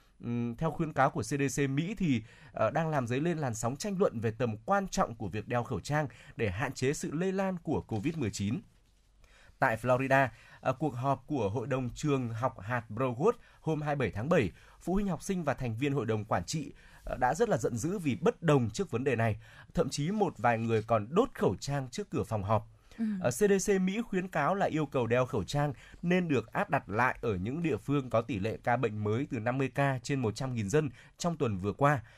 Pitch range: 115-160 Hz